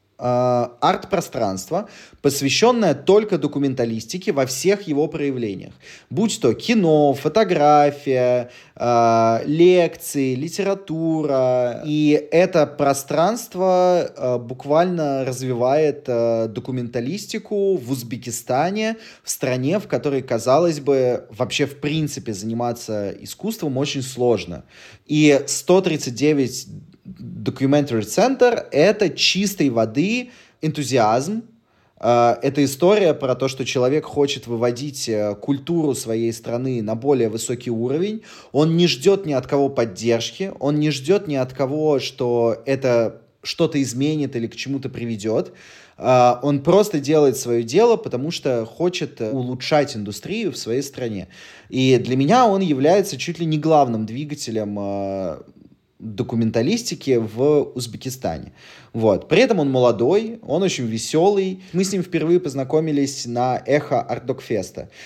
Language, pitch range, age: Russian, 120-160 Hz, 20-39